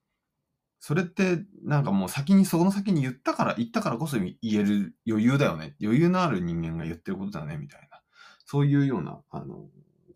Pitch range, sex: 90-150 Hz, male